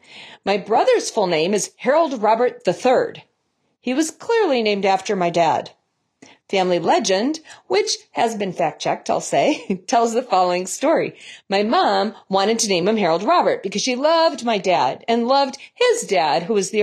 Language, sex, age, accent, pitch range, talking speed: English, female, 40-59, American, 195-285 Hz, 170 wpm